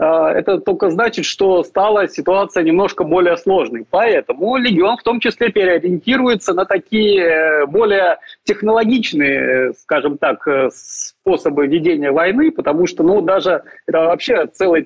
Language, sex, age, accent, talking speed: Ukrainian, male, 30-49, native, 125 wpm